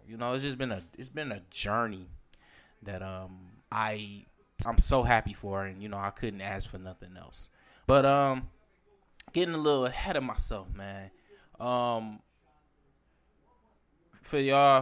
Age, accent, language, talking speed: 10-29, American, English, 155 wpm